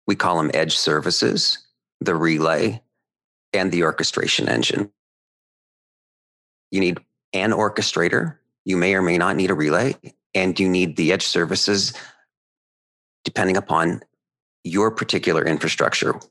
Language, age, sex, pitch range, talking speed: English, 40-59, male, 80-105 Hz, 125 wpm